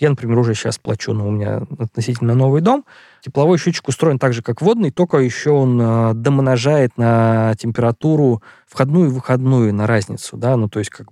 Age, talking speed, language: 20-39, 185 wpm, Russian